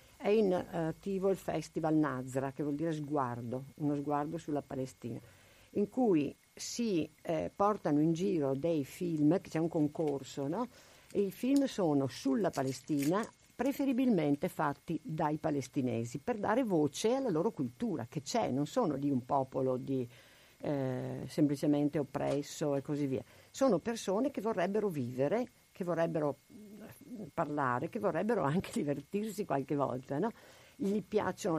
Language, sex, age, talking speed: Italian, female, 50-69, 140 wpm